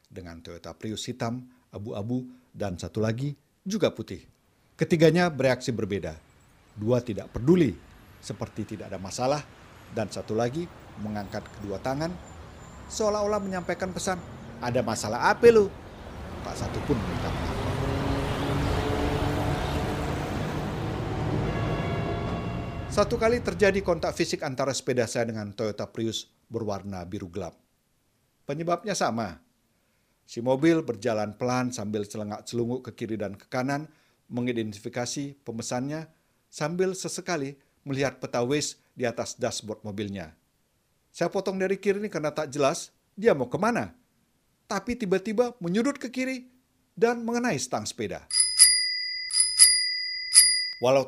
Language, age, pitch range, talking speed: Indonesian, 50-69, 110-175 Hz, 115 wpm